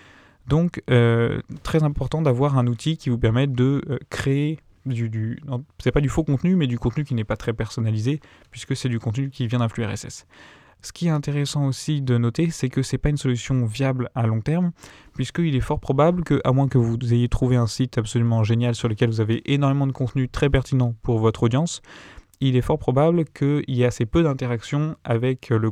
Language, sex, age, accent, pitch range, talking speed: French, male, 20-39, French, 120-145 Hz, 215 wpm